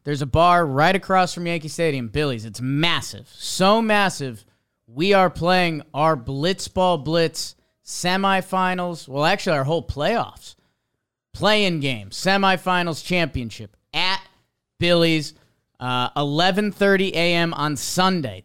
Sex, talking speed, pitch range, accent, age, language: male, 115 wpm, 140-180 Hz, American, 30-49, English